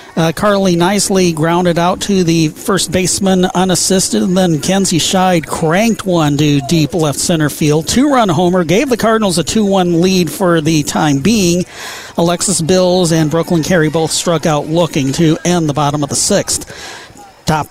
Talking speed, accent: 170 wpm, American